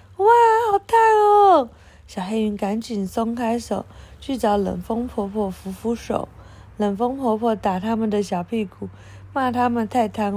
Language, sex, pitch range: Chinese, female, 170-235 Hz